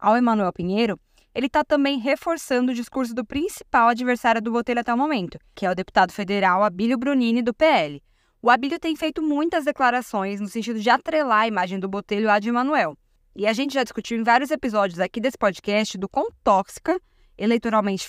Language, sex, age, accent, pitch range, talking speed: Portuguese, female, 10-29, Brazilian, 205-275 Hz, 190 wpm